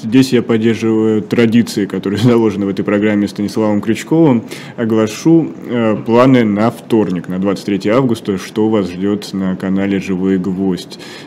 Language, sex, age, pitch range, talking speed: Russian, male, 20-39, 95-110 Hz, 135 wpm